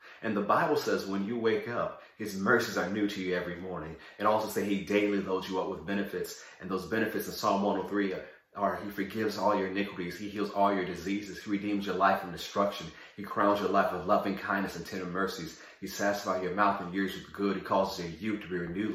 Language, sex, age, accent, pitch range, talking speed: English, male, 30-49, American, 100-120 Hz, 230 wpm